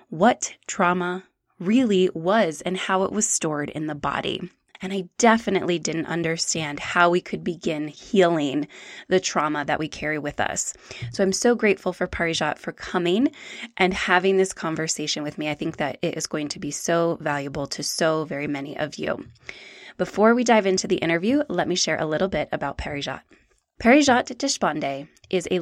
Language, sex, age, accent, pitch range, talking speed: English, female, 20-39, American, 160-220 Hz, 180 wpm